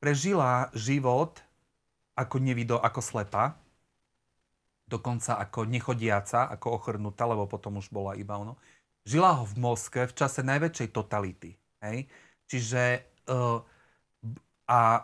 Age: 40-59